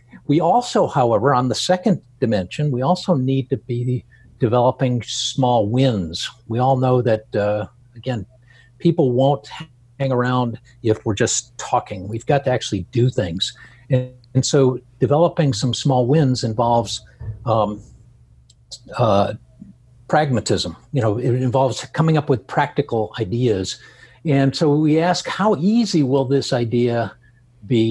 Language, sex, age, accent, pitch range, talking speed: English, male, 60-79, American, 115-140 Hz, 140 wpm